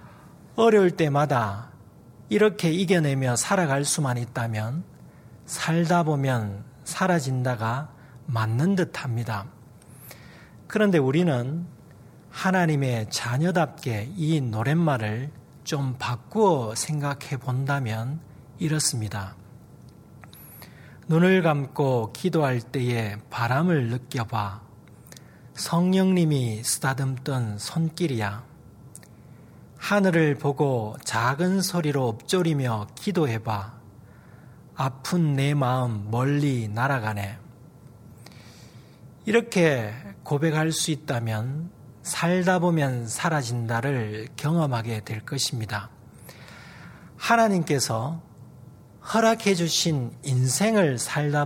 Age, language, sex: 40-59, Korean, male